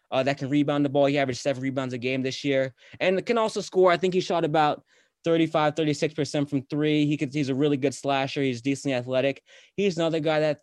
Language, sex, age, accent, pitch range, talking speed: English, male, 20-39, American, 135-160 Hz, 245 wpm